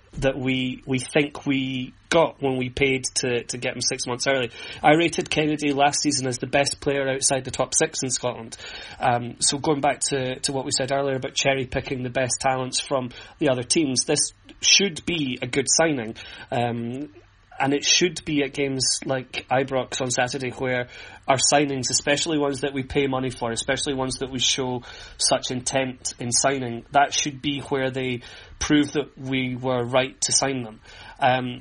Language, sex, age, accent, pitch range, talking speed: English, male, 30-49, British, 125-145 Hz, 190 wpm